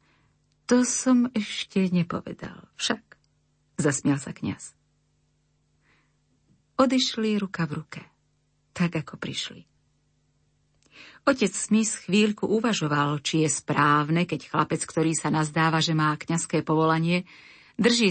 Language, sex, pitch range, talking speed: Slovak, female, 155-205 Hz, 105 wpm